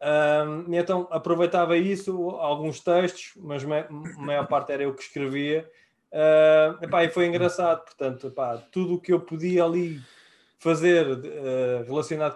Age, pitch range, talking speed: 20-39, 120-155 Hz, 150 wpm